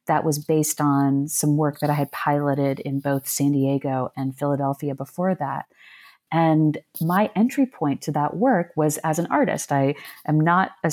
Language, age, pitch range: English, 30-49, 150-195 Hz